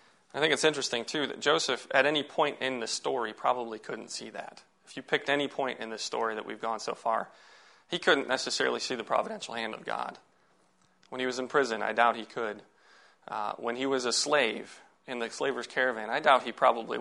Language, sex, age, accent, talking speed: English, male, 30-49, American, 220 wpm